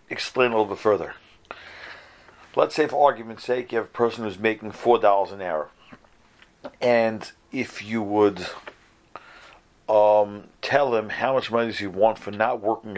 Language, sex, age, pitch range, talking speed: English, male, 50-69, 115-150 Hz, 165 wpm